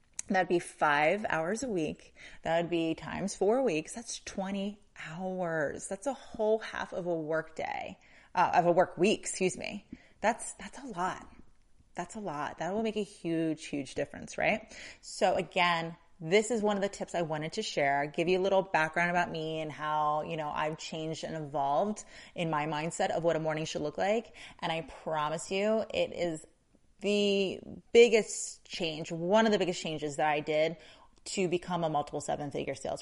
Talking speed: 190 wpm